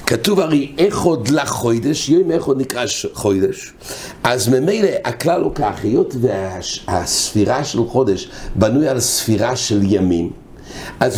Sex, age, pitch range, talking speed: male, 60-79, 115-155 Hz, 140 wpm